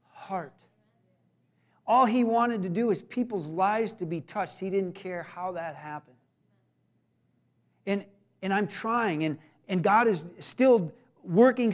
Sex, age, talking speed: male, 40-59, 145 wpm